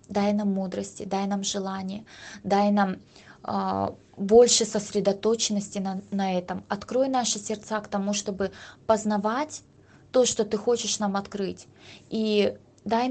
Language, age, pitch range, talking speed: Russian, 20-39, 190-215 Hz, 135 wpm